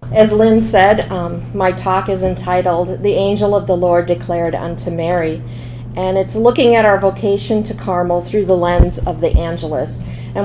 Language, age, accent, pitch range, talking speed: English, 40-59, American, 155-195 Hz, 180 wpm